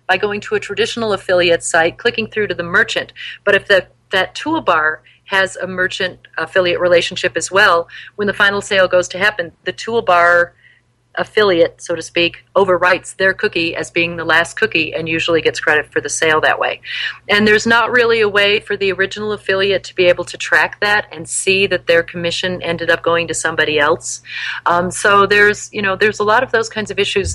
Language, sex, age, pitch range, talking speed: English, female, 40-59, 170-210 Hz, 205 wpm